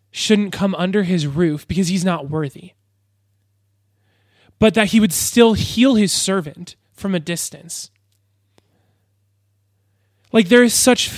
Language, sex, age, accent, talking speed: English, male, 20-39, American, 130 wpm